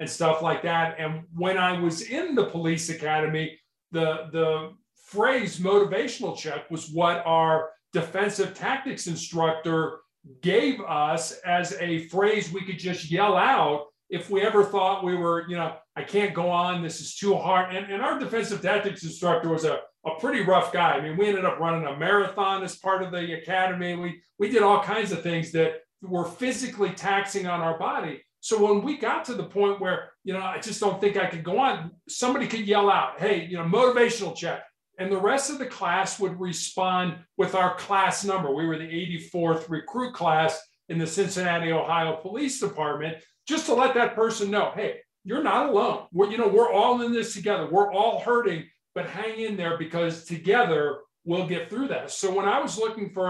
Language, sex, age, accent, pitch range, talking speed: English, male, 50-69, American, 165-205 Hz, 200 wpm